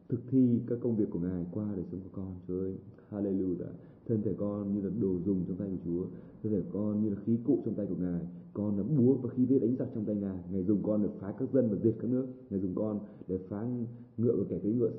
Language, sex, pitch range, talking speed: Vietnamese, male, 95-115 Hz, 275 wpm